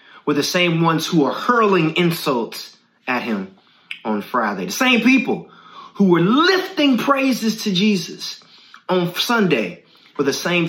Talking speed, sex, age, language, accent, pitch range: 145 wpm, male, 30-49, English, American, 145-190 Hz